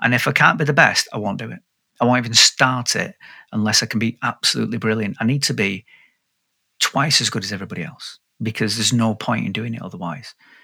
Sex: male